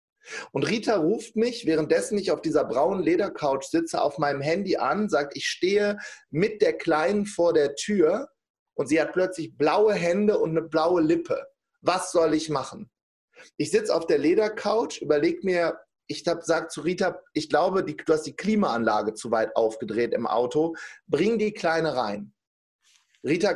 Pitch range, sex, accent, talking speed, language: 155-215 Hz, male, German, 165 wpm, German